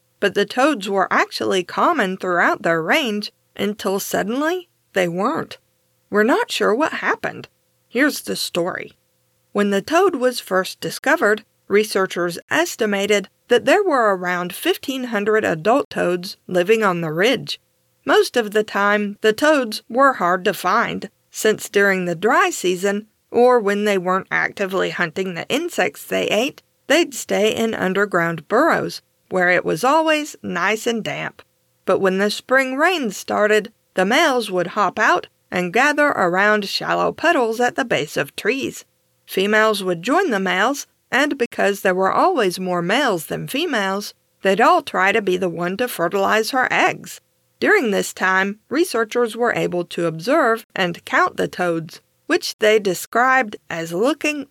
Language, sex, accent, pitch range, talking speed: English, female, American, 185-250 Hz, 155 wpm